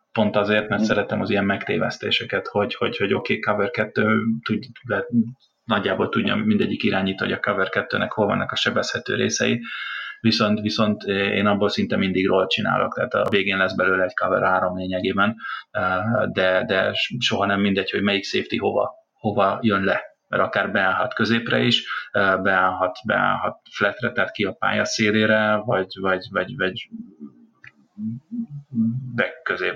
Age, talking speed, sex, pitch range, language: 30-49, 145 wpm, male, 100-115 Hz, Hungarian